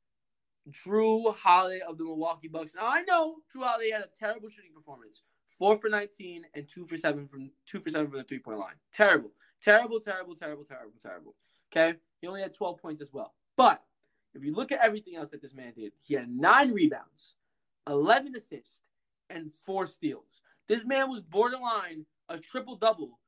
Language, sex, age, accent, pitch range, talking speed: English, male, 20-39, American, 150-210 Hz, 185 wpm